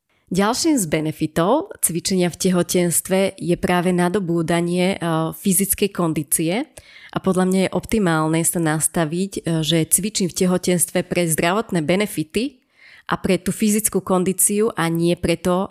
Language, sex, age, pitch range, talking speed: Slovak, female, 30-49, 170-195 Hz, 125 wpm